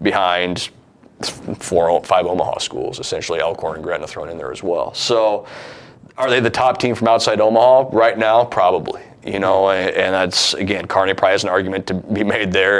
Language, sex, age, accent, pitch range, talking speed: English, male, 30-49, American, 90-110 Hz, 190 wpm